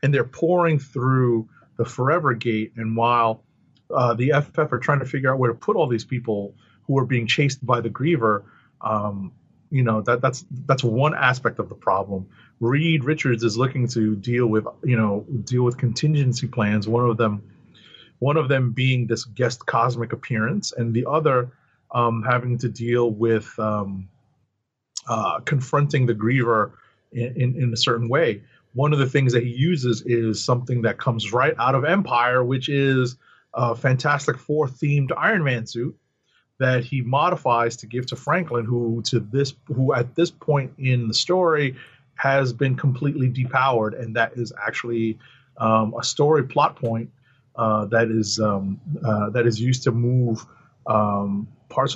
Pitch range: 115-135 Hz